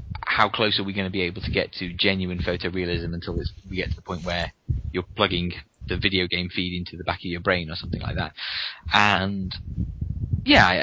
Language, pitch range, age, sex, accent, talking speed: English, 90-105 Hz, 20-39, male, British, 210 wpm